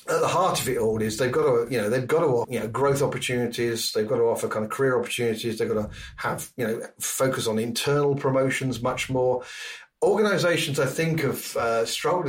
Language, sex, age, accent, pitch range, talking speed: English, male, 40-59, British, 120-150 Hz, 225 wpm